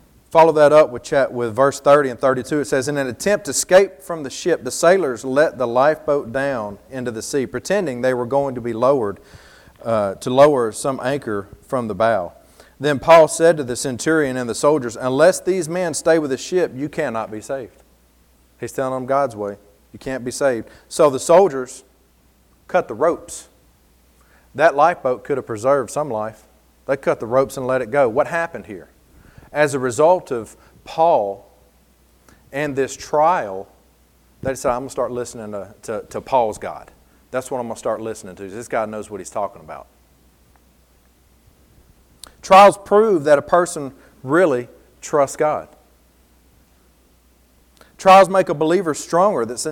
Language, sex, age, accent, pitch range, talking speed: English, male, 40-59, American, 95-150 Hz, 175 wpm